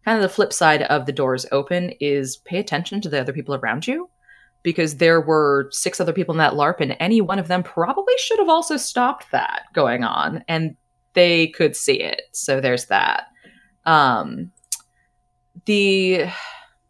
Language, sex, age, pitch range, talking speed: English, female, 20-39, 140-195 Hz, 180 wpm